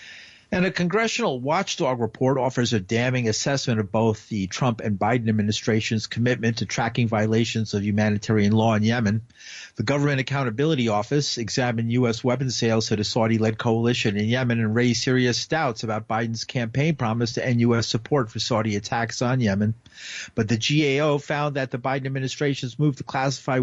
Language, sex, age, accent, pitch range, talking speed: English, male, 50-69, American, 105-125 Hz, 170 wpm